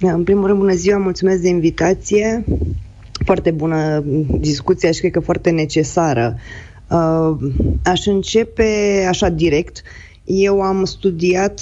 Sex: female